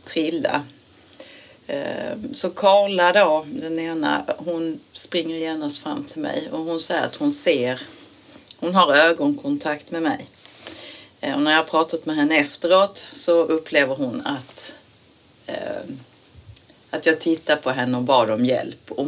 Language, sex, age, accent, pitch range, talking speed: Swedish, female, 40-59, native, 145-190 Hz, 140 wpm